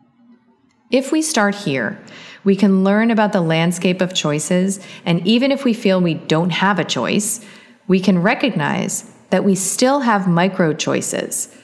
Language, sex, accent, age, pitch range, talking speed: English, female, American, 30-49, 160-220 Hz, 155 wpm